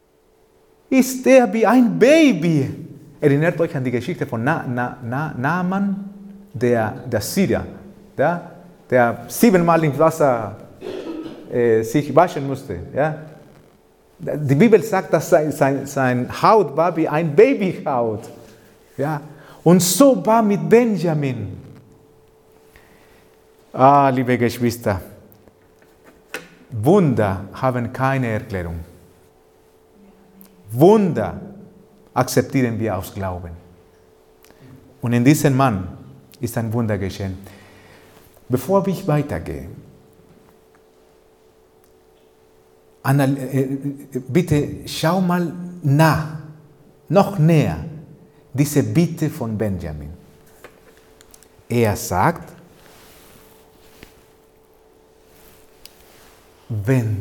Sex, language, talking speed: male, German, 85 wpm